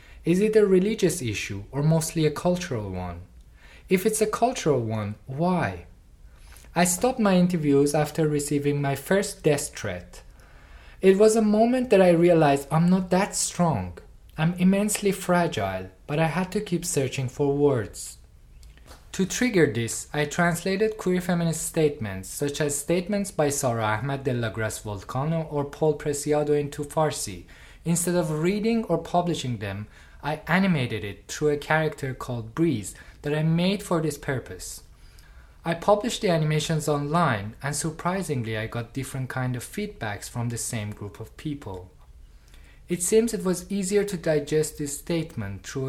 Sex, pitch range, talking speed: male, 115-175 Hz, 155 wpm